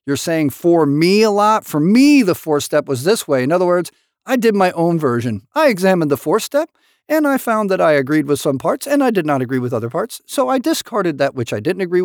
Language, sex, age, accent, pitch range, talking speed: English, male, 50-69, American, 135-200 Hz, 260 wpm